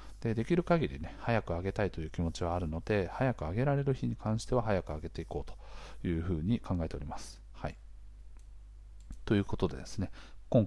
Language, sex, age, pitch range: Japanese, male, 40-59, 85-105 Hz